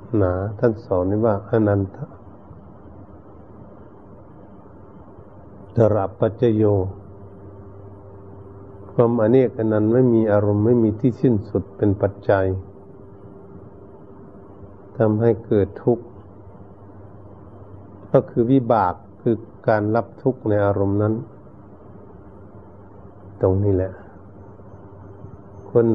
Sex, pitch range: male, 100-115 Hz